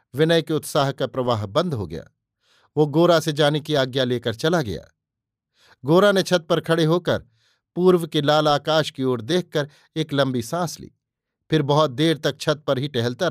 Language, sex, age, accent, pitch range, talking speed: Hindi, male, 50-69, native, 130-160 Hz, 190 wpm